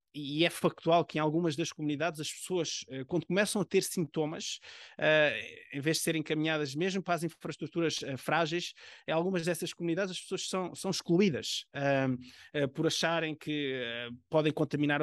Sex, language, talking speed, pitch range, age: male, Portuguese, 175 wpm, 145-175 Hz, 20-39